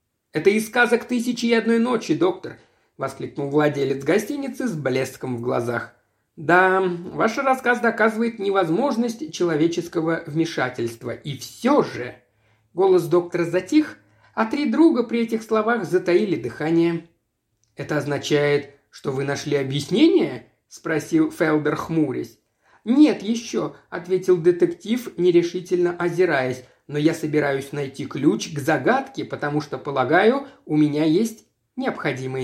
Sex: male